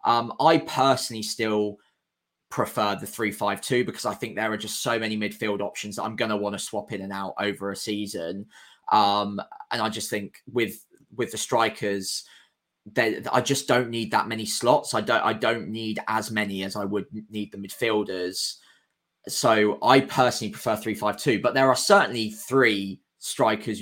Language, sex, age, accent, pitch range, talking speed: English, male, 20-39, British, 105-115 Hz, 180 wpm